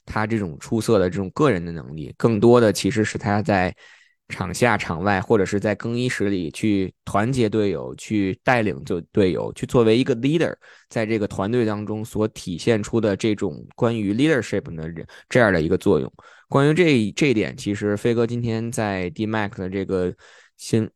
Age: 20-39